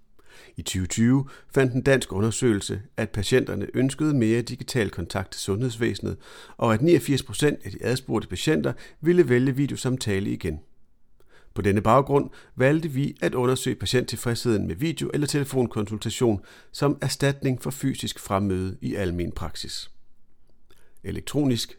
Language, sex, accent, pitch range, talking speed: Danish, male, native, 100-135 Hz, 130 wpm